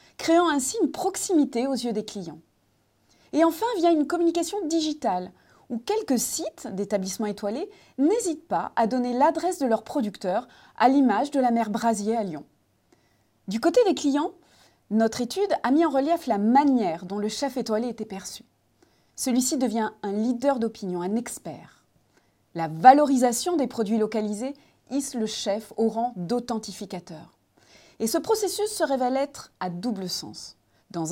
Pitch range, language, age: 215-295 Hz, French, 30-49